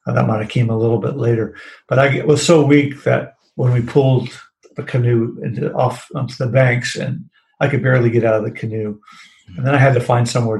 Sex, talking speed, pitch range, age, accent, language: male, 240 wpm, 115-140 Hz, 50-69, American, English